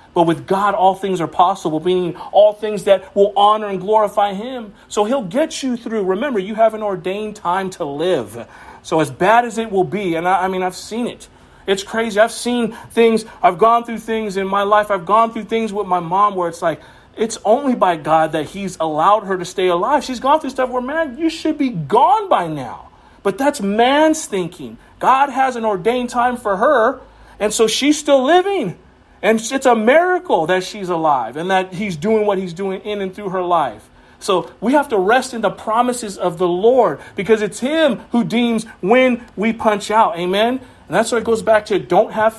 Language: English